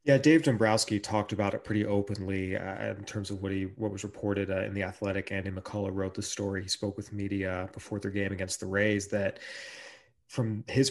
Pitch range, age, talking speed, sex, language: 100-115 Hz, 30-49, 215 wpm, male, English